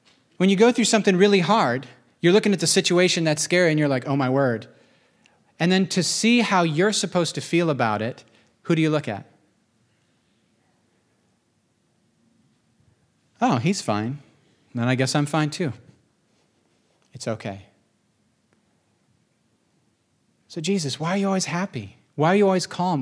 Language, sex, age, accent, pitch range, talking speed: English, male, 40-59, American, 125-180 Hz, 155 wpm